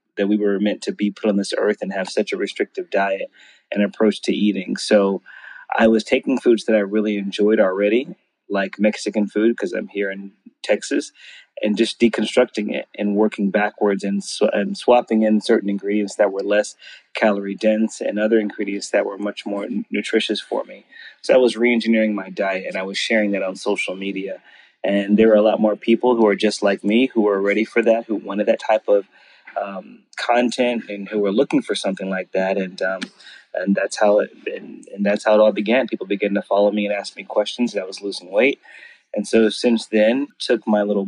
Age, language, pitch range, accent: 30-49, English, 100-110 Hz, American